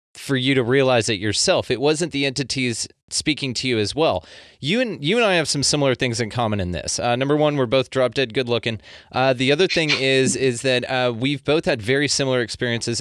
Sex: male